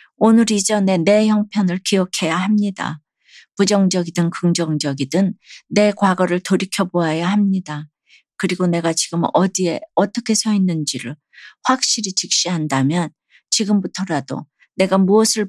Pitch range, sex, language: 155-195 Hz, female, Korean